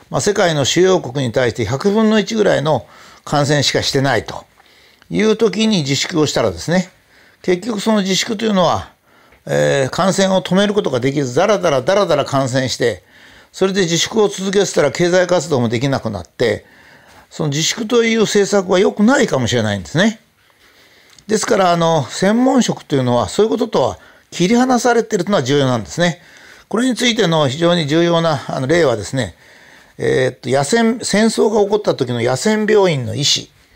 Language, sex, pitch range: Japanese, male, 140-210 Hz